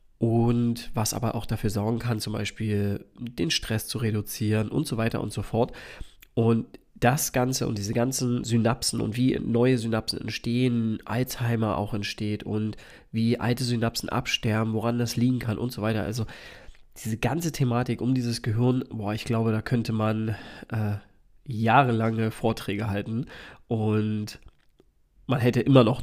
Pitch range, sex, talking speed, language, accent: 110-125 Hz, male, 155 wpm, German, German